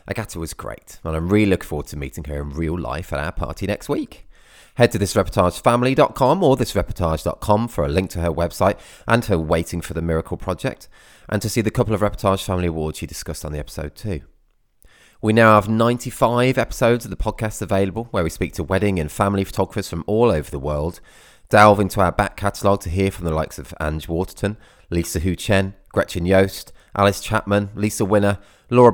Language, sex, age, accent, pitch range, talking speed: English, male, 30-49, British, 85-115 Hz, 205 wpm